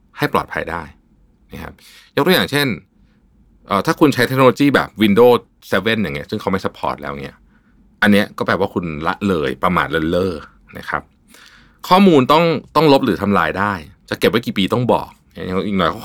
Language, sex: Thai, male